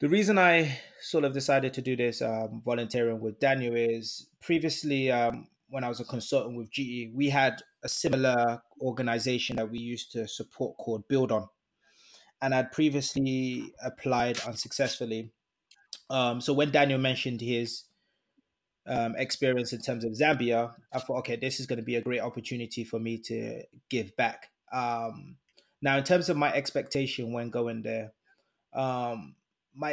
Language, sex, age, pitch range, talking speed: English, male, 20-39, 120-140 Hz, 160 wpm